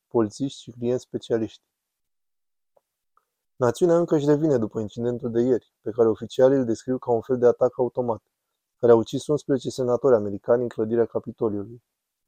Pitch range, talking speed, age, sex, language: 115-135 Hz, 155 wpm, 20-39, male, Romanian